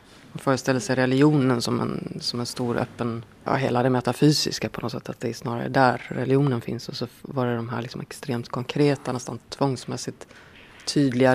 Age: 30-49